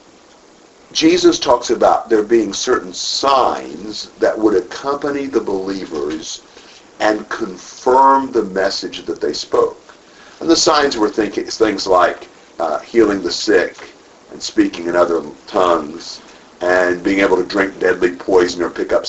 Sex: male